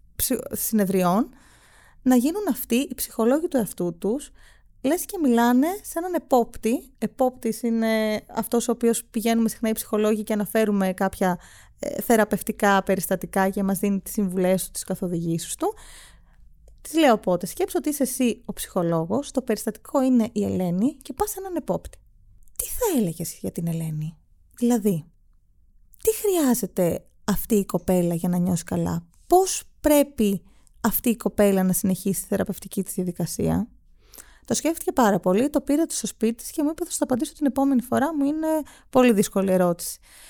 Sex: female